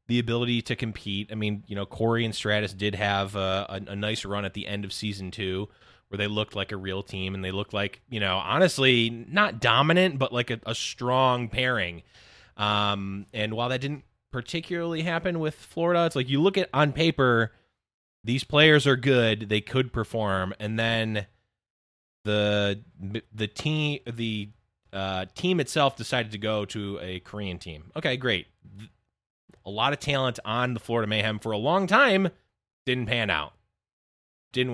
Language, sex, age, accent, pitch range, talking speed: English, male, 20-39, American, 100-130 Hz, 180 wpm